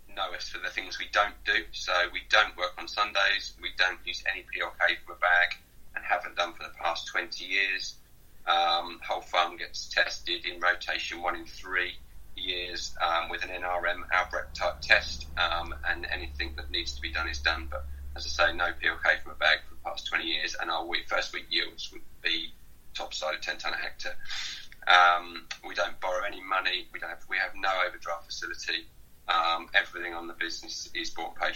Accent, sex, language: British, male, English